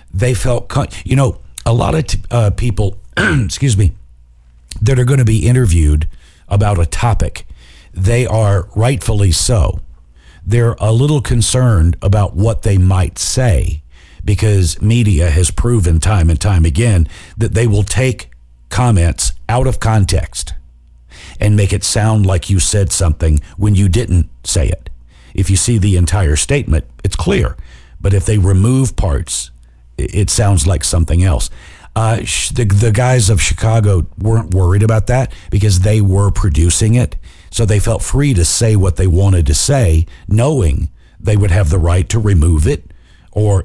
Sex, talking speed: male, 160 wpm